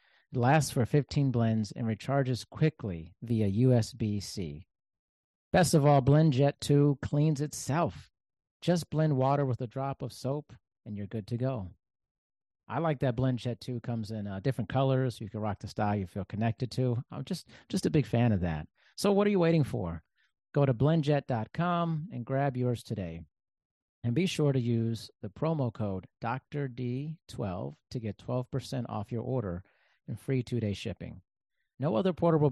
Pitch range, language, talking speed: 110-140 Hz, English, 170 wpm